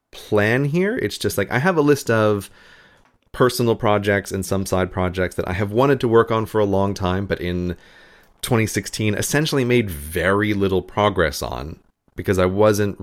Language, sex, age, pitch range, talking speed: English, male, 30-49, 90-115 Hz, 180 wpm